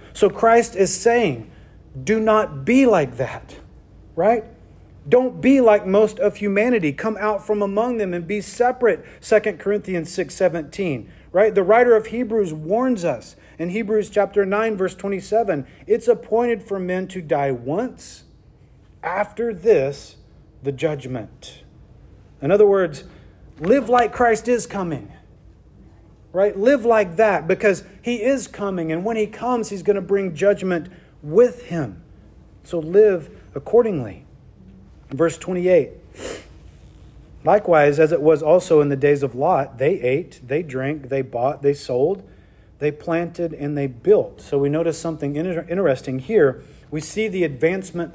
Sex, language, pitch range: male, English, 140-215 Hz